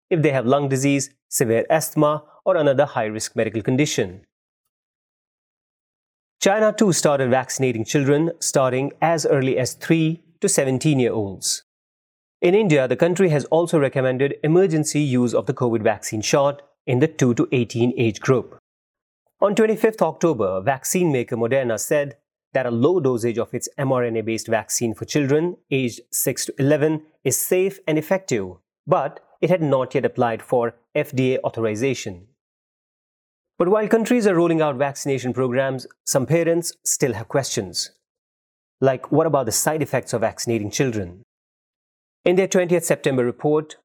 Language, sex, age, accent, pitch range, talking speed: English, male, 30-49, Indian, 120-155 Hz, 145 wpm